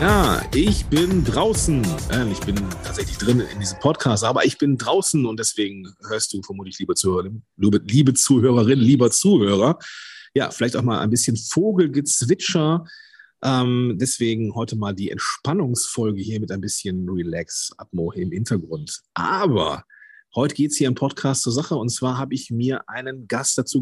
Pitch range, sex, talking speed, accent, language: 100-145 Hz, male, 155 wpm, German, German